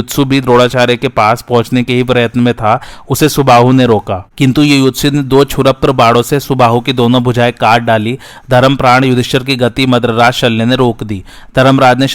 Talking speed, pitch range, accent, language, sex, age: 85 wpm, 120-130 Hz, native, Hindi, male, 30-49